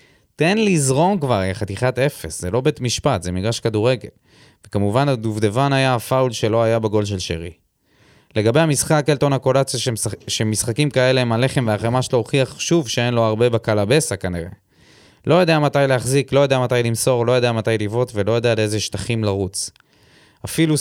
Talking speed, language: 160 wpm, Hebrew